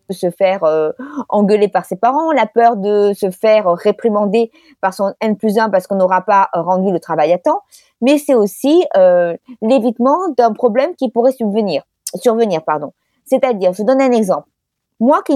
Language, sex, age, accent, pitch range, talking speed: French, female, 20-39, French, 205-275 Hz, 175 wpm